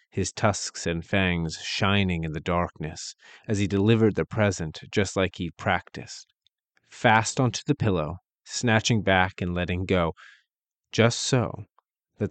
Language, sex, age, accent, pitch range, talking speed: English, male, 30-49, American, 85-105 Hz, 140 wpm